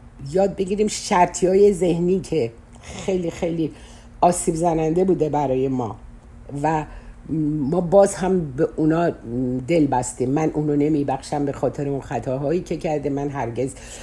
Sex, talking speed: female, 145 wpm